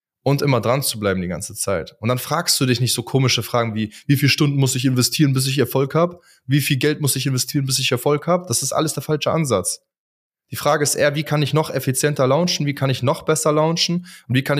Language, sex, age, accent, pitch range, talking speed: German, male, 20-39, German, 115-145 Hz, 260 wpm